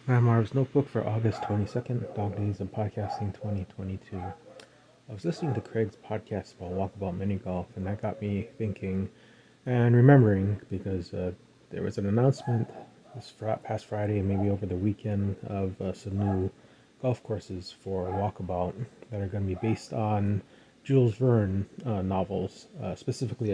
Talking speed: 160 wpm